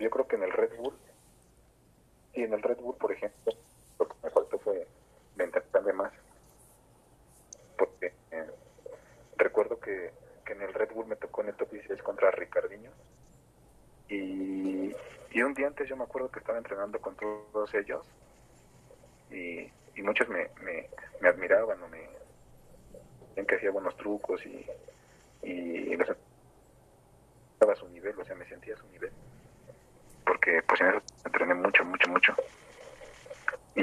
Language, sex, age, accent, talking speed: Spanish, male, 40-59, Mexican, 155 wpm